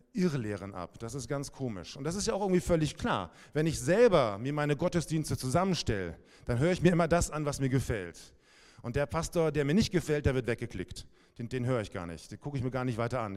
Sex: male